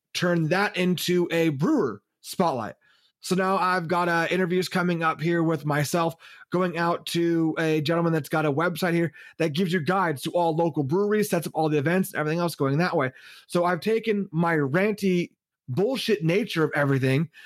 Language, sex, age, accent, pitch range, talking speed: English, male, 30-49, American, 155-185 Hz, 185 wpm